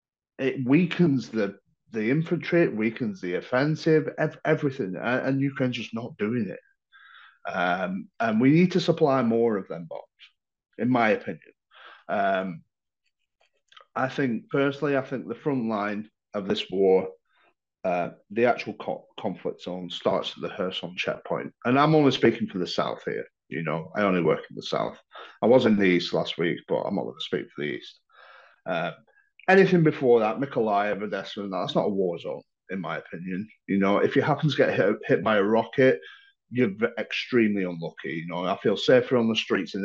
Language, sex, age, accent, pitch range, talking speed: English, male, 30-49, British, 110-170 Hz, 185 wpm